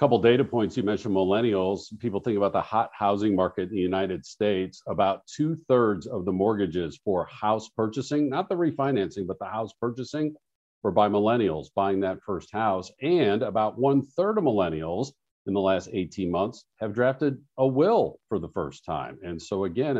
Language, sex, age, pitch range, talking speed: English, male, 50-69, 100-140 Hz, 180 wpm